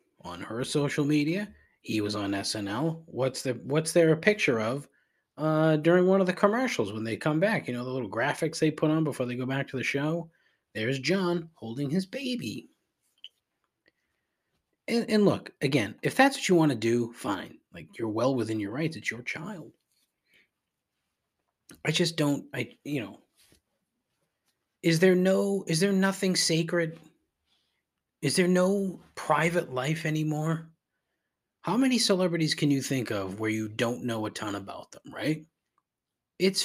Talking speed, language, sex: 165 wpm, English, male